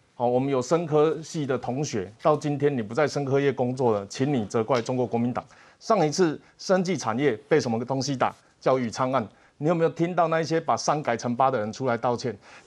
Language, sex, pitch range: Chinese, male, 145-205 Hz